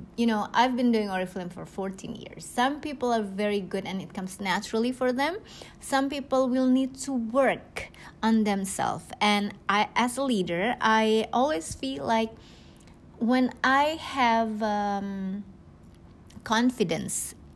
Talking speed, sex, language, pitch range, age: 145 wpm, female, Indonesian, 205-255 Hz, 20-39